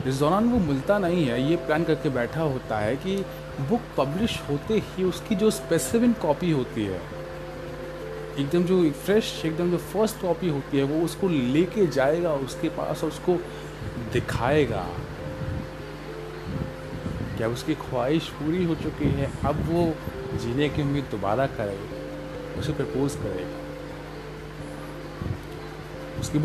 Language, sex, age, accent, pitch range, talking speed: Hindi, male, 30-49, native, 125-170 Hz, 130 wpm